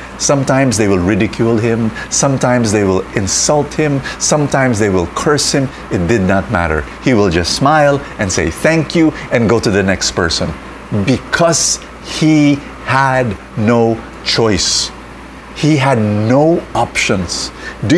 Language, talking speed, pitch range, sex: English, 145 wpm, 95-145 Hz, male